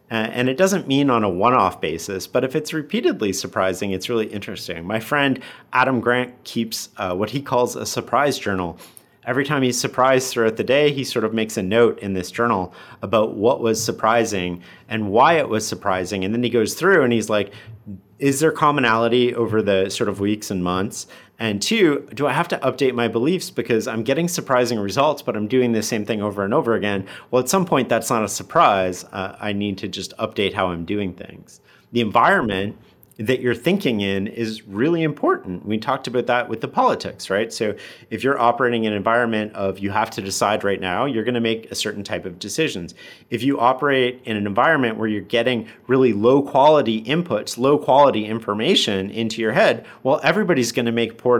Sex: male